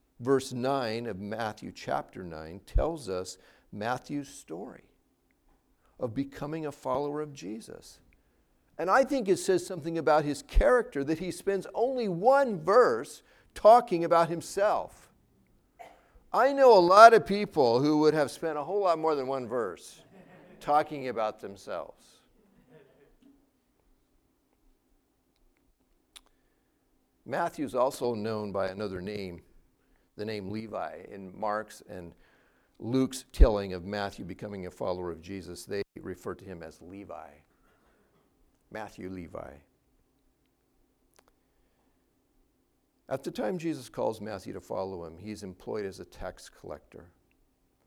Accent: American